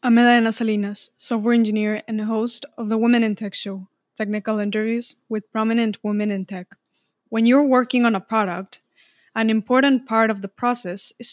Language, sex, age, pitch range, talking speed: English, female, 20-39, 205-240 Hz, 170 wpm